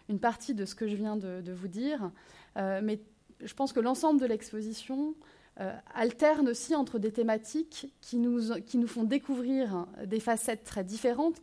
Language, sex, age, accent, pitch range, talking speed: French, female, 30-49, French, 200-250 Hz, 185 wpm